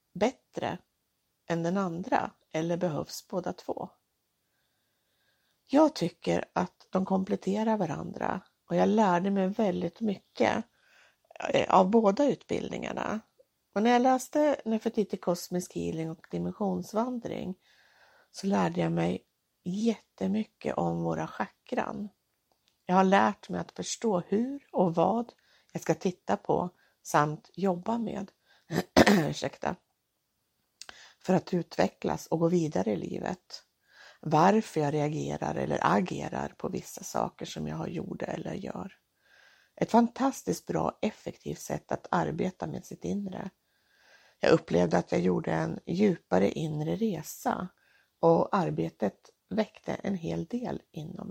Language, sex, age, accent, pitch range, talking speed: Swedish, female, 60-79, native, 165-220 Hz, 125 wpm